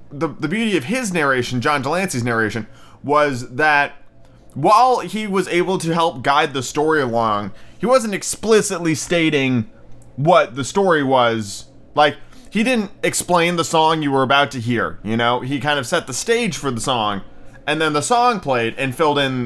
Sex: male